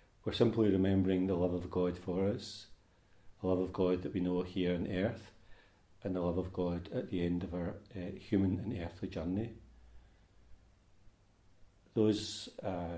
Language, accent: English, British